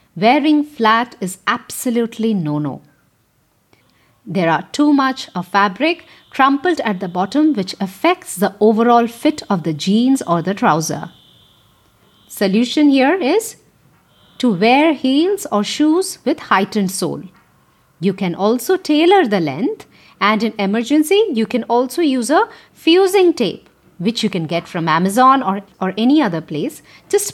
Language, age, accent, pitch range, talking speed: English, 50-69, Indian, 185-290 Hz, 145 wpm